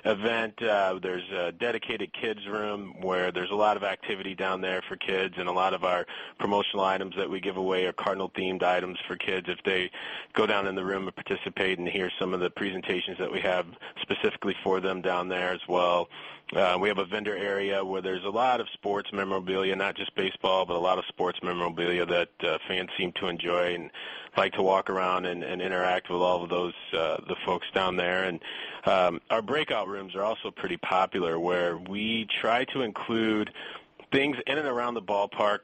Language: English